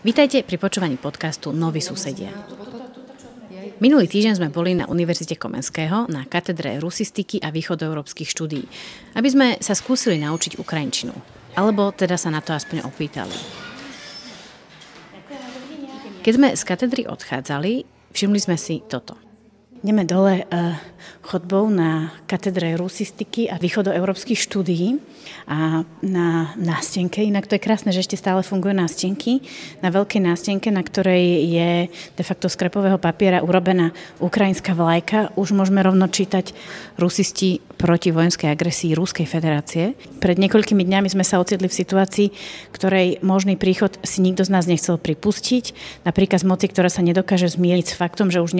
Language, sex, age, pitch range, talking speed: Slovak, female, 30-49, 170-205 Hz, 140 wpm